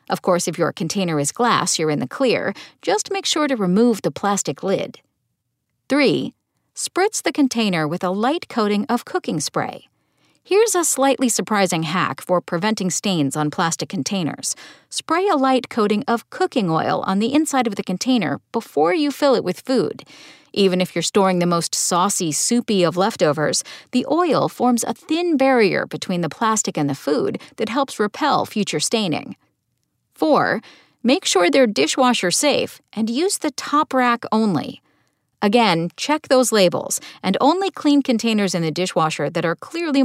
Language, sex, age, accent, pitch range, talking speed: English, female, 40-59, American, 180-270 Hz, 170 wpm